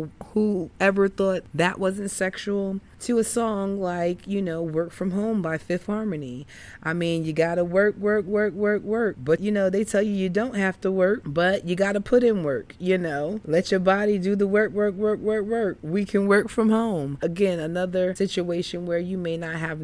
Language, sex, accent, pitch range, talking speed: English, female, American, 150-190 Hz, 210 wpm